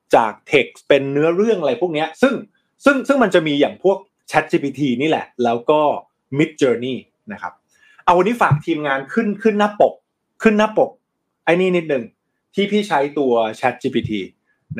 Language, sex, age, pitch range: Thai, male, 20-39, 120-170 Hz